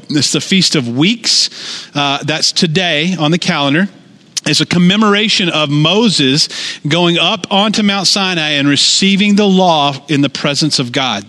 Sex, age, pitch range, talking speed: male, 40-59, 160-215 Hz, 160 wpm